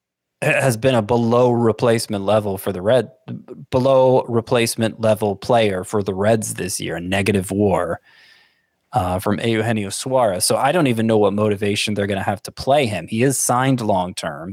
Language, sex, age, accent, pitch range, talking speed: English, male, 20-39, American, 105-125 Hz, 180 wpm